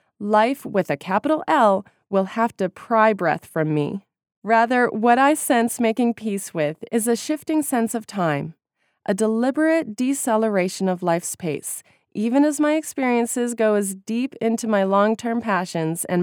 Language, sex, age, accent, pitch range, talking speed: English, female, 20-39, American, 190-245 Hz, 160 wpm